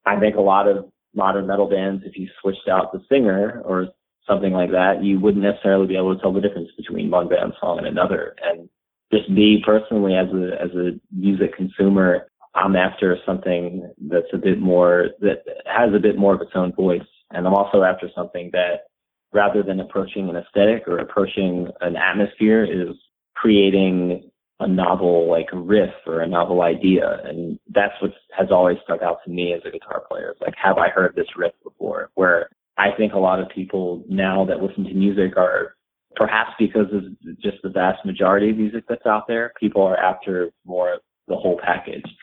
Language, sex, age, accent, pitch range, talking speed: English, male, 20-39, American, 90-105 Hz, 200 wpm